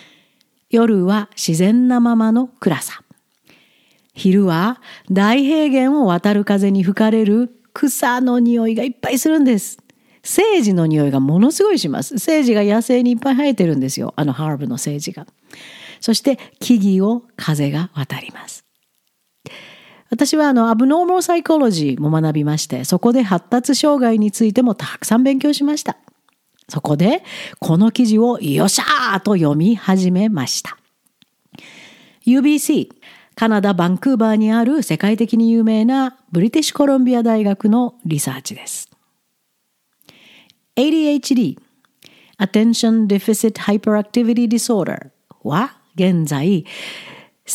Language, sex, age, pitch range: Japanese, female, 50-69, 190-255 Hz